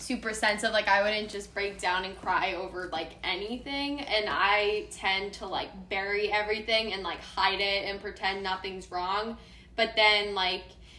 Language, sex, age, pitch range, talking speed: English, female, 10-29, 195-225 Hz, 170 wpm